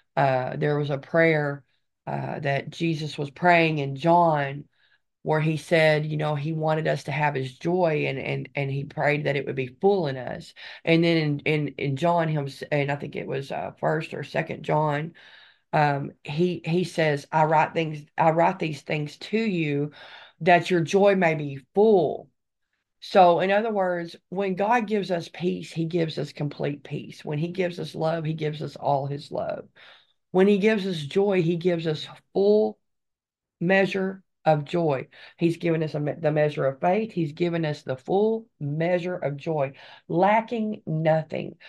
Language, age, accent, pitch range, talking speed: English, 40-59, American, 145-180 Hz, 180 wpm